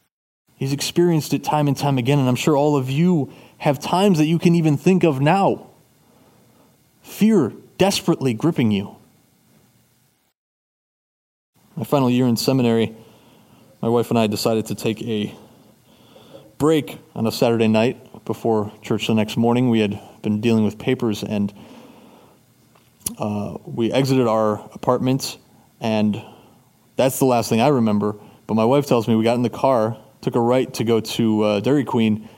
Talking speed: 160 wpm